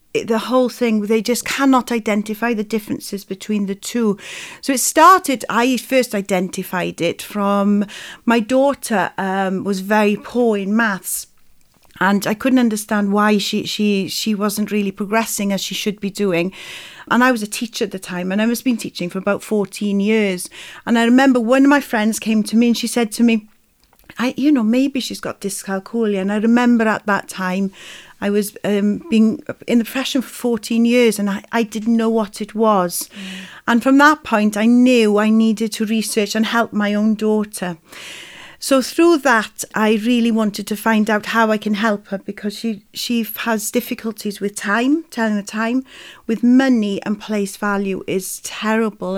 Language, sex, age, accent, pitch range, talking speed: English, female, 40-59, British, 205-235 Hz, 190 wpm